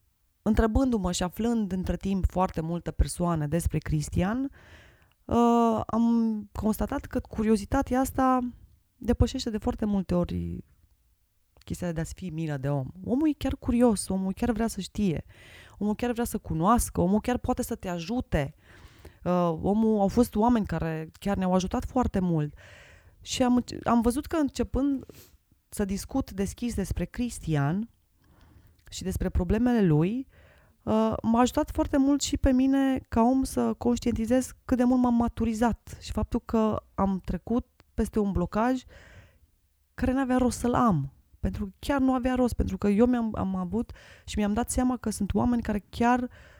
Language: Romanian